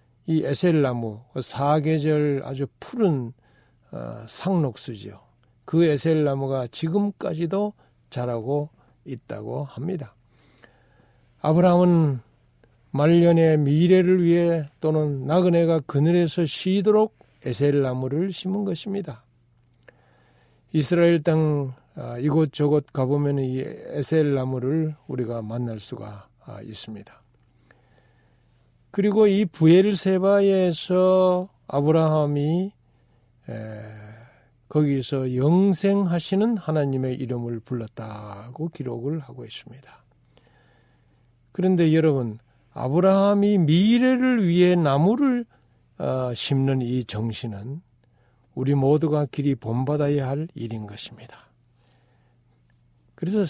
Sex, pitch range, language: male, 120-170 Hz, Korean